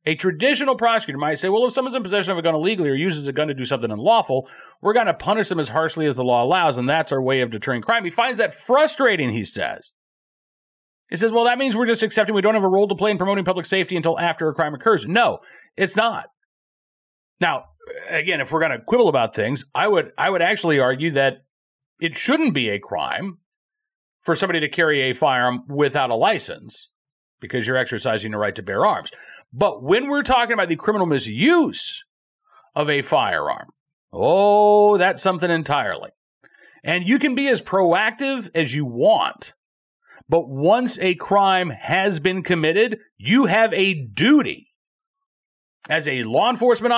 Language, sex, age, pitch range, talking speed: English, male, 40-59, 155-235 Hz, 190 wpm